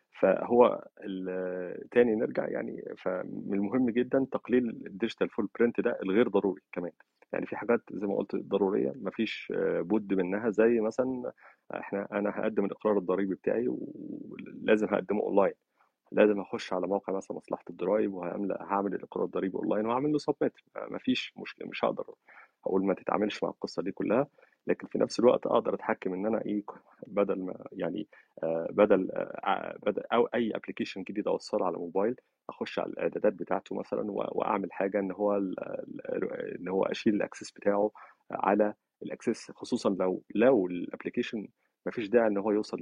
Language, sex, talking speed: Arabic, male, 155 wpm